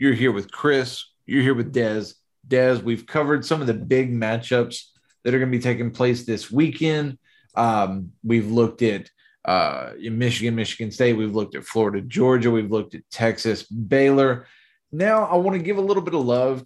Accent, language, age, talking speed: American, English, 30-49, 190 wpm